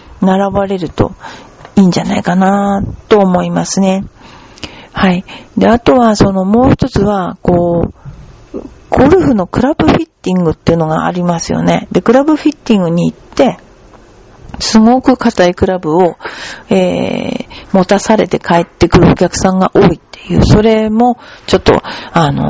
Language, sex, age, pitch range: Japanese, female, 50-69, 180-240 Hz